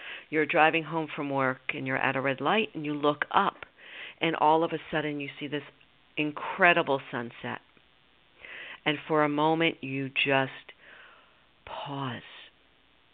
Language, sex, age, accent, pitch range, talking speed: English, female, 50-69, American, 135-160 Hz, 145 wpm